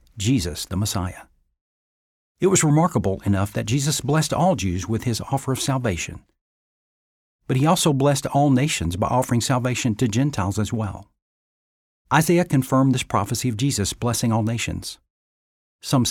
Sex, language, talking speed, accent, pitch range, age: male, English, 150 wpm, American, 100-140 Hz, 60-79